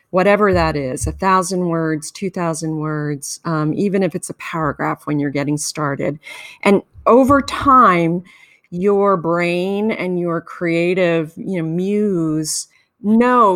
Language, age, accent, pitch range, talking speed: English, 40-59, American, 155-195 Hz, 135 wpm